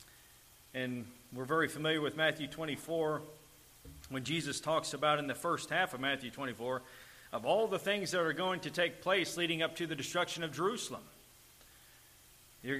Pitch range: 140-170 Hz